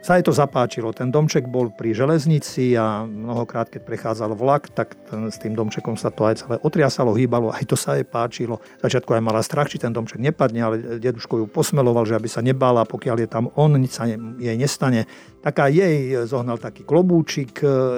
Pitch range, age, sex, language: 115-140 Hz, 50-69, male, Slovak